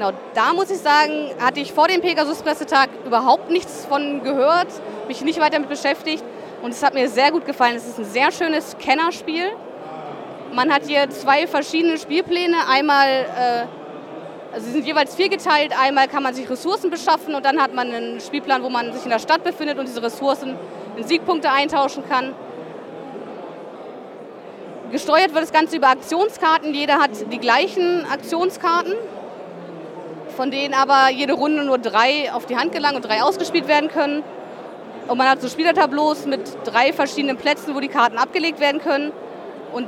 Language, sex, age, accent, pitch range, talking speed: German, female, 20-39, German, 255-310 Hz, 170 wpm